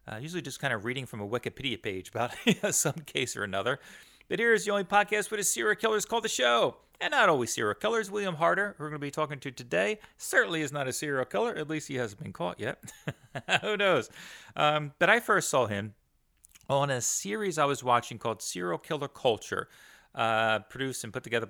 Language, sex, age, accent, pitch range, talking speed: English, male, 30-49, American, 105-155 Hz, 220 wpm